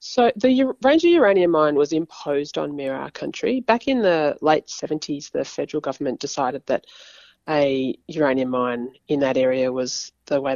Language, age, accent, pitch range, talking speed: English, 30-49, Australian, 135-160 Hz, 175 wpm